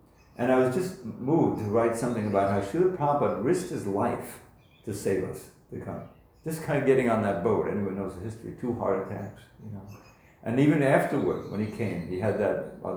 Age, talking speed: 60-79, 215 wpm